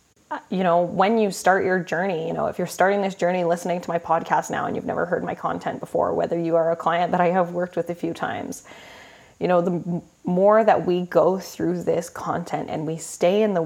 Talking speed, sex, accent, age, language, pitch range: 235 wpm, female, American, 20-39, English, 170-195 Hz